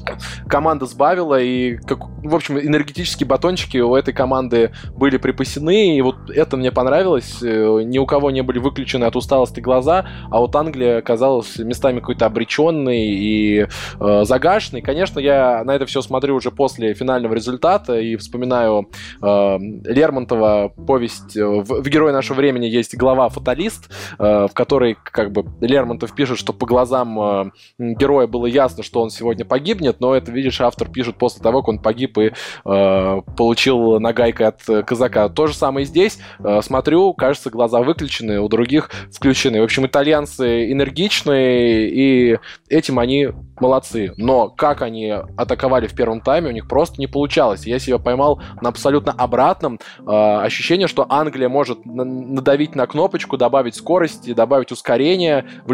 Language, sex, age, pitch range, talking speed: Russian, male, 20-39, 115-140 Hz, 155 wpm